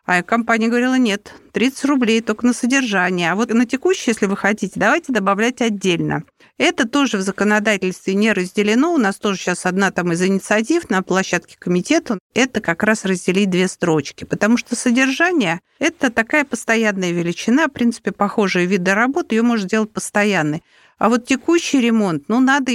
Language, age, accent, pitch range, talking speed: Russian, 50-69, native, 200-260 Hz, 170 wpm